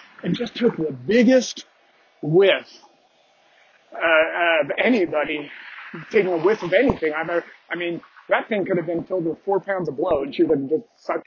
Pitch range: 155-225 Hz